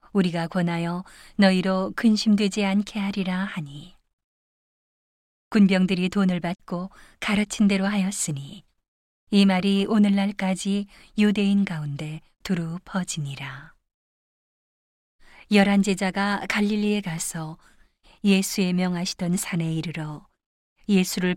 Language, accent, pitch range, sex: Korean, native, 170-200 Hz, female